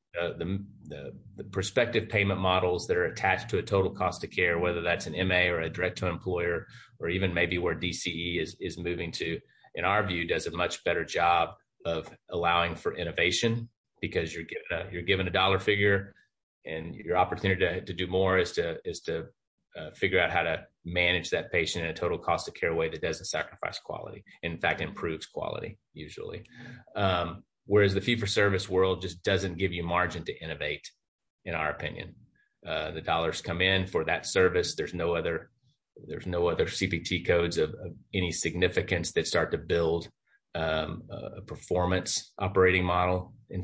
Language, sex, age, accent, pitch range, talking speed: English, male, 30-49, American, 85-100 Hz, 185 wpm